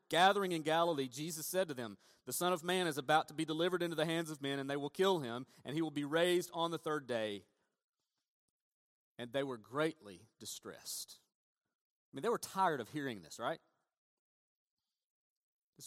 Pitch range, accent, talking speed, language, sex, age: 145-195 Hz, American, 190 wpm, English, male, 40-59